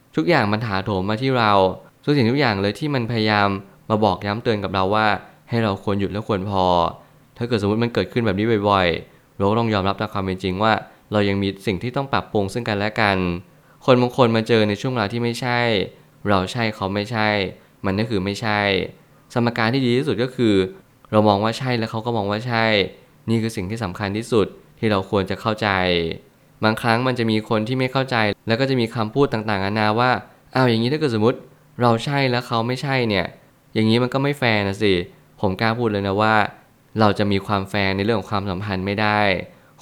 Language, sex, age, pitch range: Thai, male, 20-39, 100-120 Hz